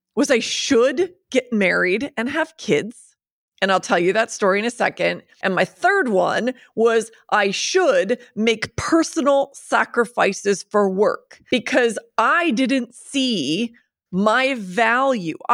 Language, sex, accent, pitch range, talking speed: English, female, American, 200-255 Hz, 135 wpm